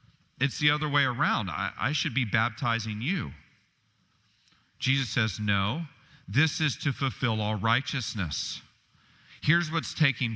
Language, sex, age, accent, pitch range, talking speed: English, male, 40-59, American, 105-135 Hz, 135 wpm